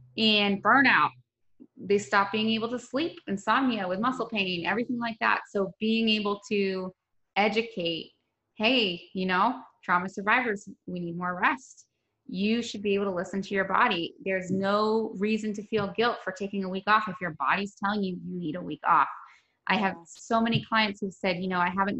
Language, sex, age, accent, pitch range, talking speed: English, female, 20-39, American, 185-220 Hz, 190 wpm